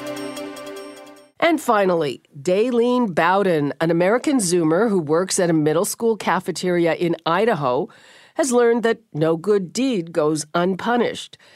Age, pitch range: 50-69, 165-230 Hz